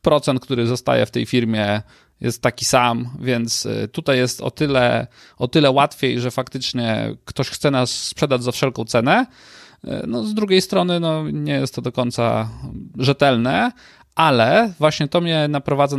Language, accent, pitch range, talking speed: Polish, native, 120-155 Hz, 160 wpm